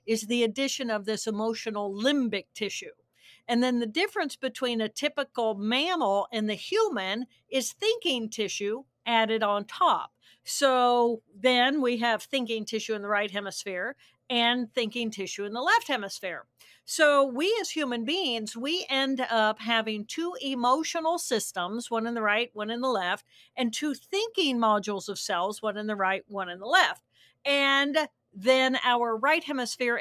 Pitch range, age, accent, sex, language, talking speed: 220-270 Hz, 50-69, American, female, English, 160 wpm